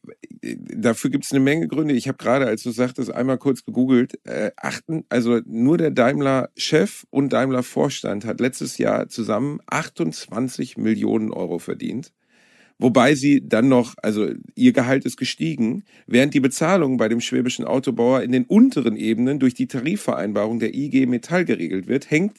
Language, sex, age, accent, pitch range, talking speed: German, male, 40-59, German, 115-140 Hz, 160 wpm